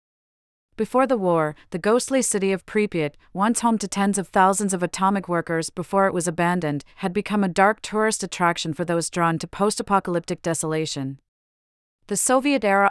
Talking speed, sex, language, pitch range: 165 wpm, female, English, 165-200 Hz